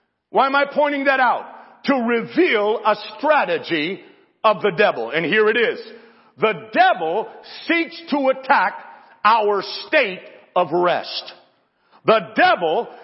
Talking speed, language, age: 130 wpm, English, 50-69